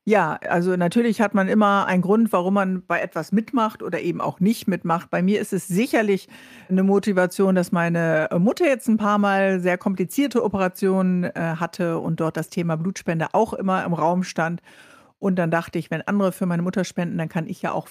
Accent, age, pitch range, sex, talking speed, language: German, 50-69, 175-205 Hz, female, 205 wpm, German